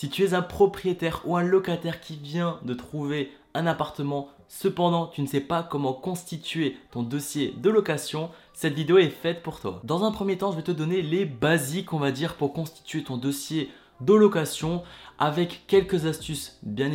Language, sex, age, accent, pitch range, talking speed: French, male, 20-39, French, 140-170 Hz, 190 wpm